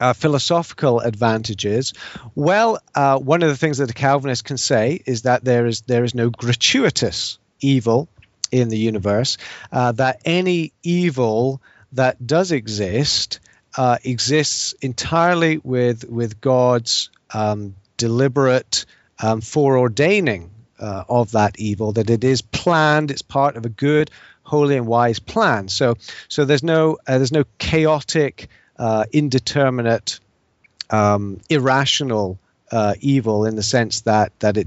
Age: 40-59